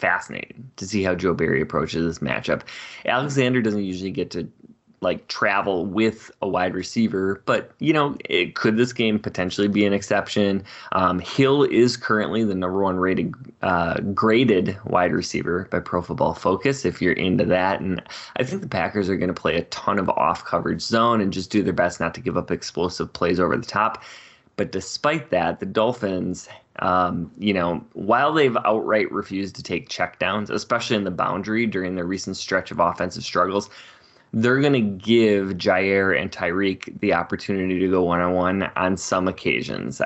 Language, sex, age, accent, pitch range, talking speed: English, male, 20-39, American, 95-110 Hz, 180 wpm